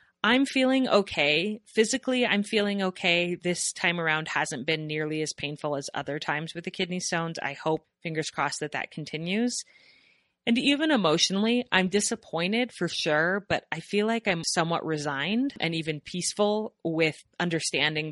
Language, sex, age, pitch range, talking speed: English, female, 30-49, 145-185 Hz, 160 wpm